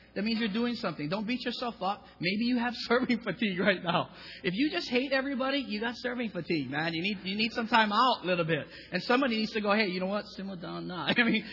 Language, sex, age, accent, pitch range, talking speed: English, male, 30-49, American, 150-200 Hz, 255 wpm